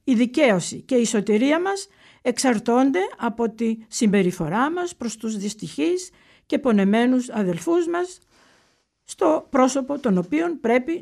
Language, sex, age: Greek, female, 50-69